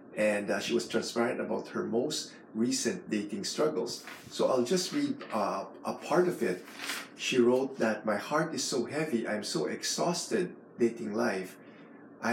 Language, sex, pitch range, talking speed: English, male, 105-120 Hz, 165 wpm